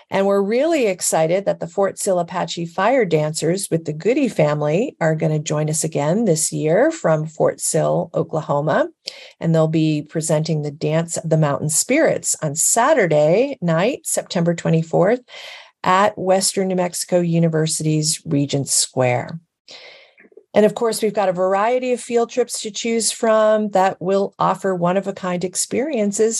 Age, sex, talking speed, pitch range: 40-59, female, 150 wpm, 160-220 Hz